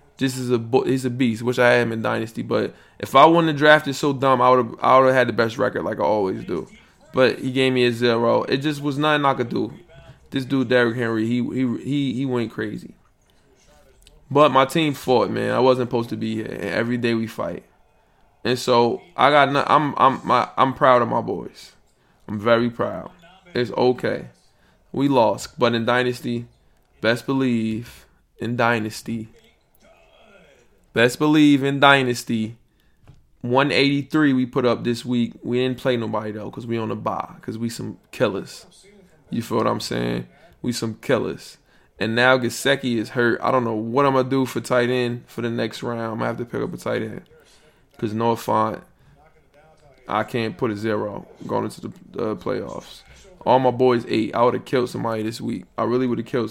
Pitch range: 115-130 Hz